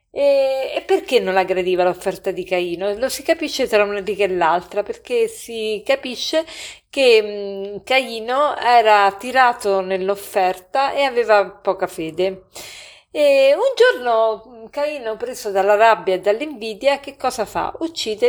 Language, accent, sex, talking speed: Italian, native, female, 130 wpm